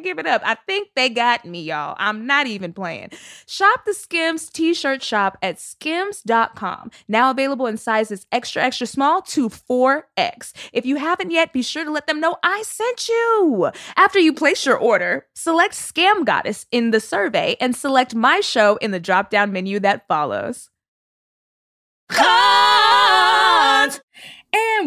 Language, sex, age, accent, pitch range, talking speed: English, female, 20-39, American, 210-290 Hz, 155 wpm